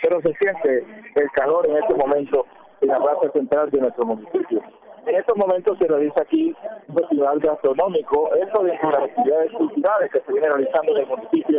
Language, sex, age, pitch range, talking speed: Spanish, male, 40-59, 150-210 Hz, 185 wpm